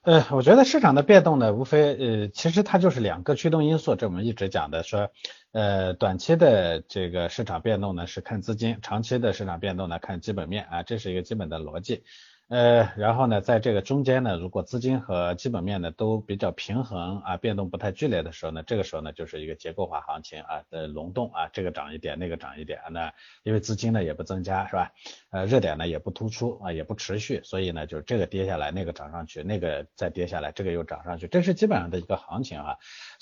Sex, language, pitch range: male, Chinese, 90-130 Hz